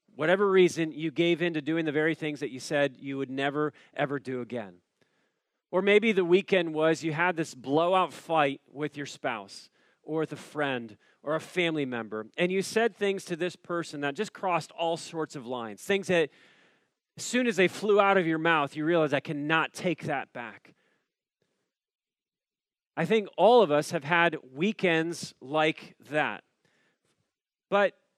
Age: 40-59